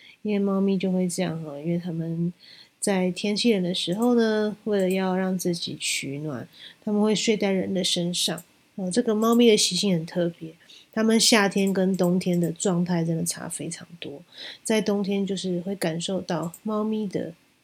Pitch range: 175-210 Hz